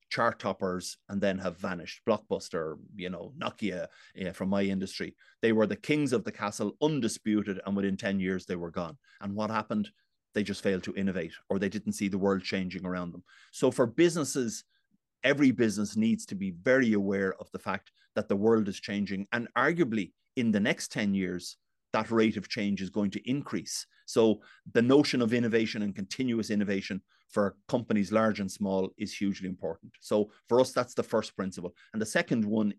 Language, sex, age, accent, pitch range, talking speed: English, male, 30-49, Irish, 95-115 Hz, 190 wpm